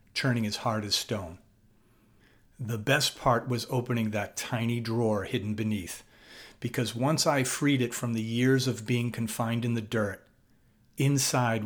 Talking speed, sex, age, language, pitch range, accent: 155 wpm, male, 40-59, English, 110-130 Hz, American